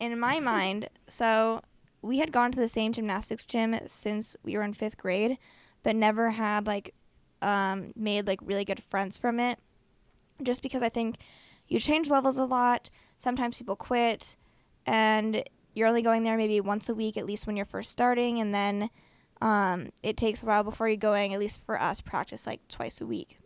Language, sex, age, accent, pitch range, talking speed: English, female, 10-29, American, 205-240 Hz, 195 wpm